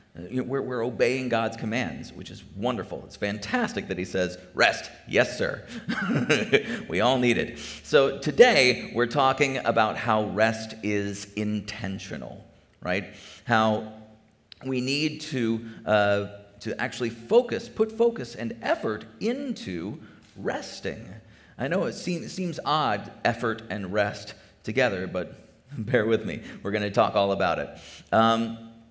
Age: 40-59